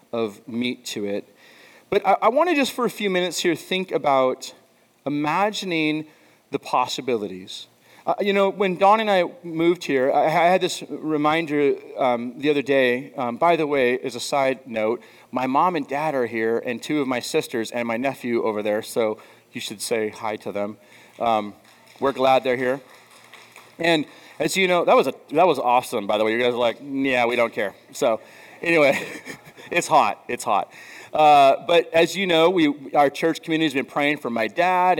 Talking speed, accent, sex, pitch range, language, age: 195 wpm, American, male, 125-170 Hz, English, 30-49